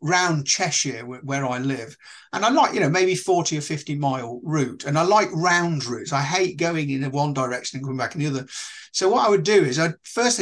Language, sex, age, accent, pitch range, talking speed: English, male, 50-69, British, 140-190 Hz, 235 wpm